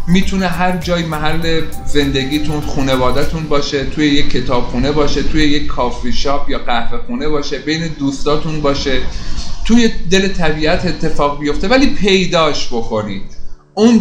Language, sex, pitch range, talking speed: Persian, male, 140-170 Hz, 135 wpm